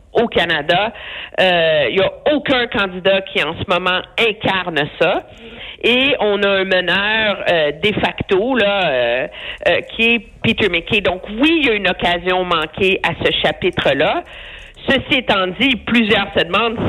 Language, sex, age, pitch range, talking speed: French, female, 50-69, 170-230 Hz, 165 wpm